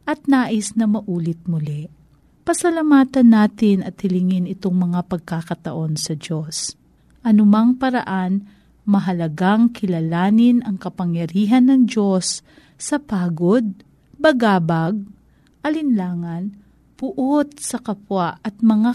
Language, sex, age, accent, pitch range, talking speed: Filipino, female, 40-59, native, 170-230 Hz, 100 wpm